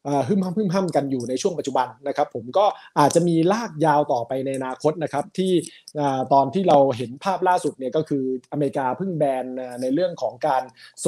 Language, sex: Thai, male